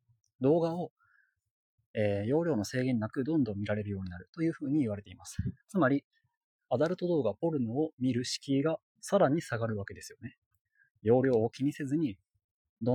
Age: 20-39